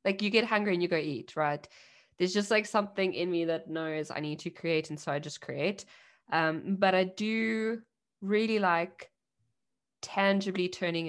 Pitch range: 170-210 Hz